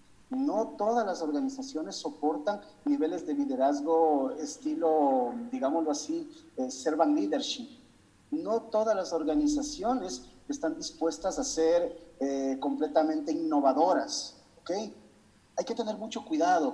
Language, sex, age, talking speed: Spanish, male, 40-59, 110 wpm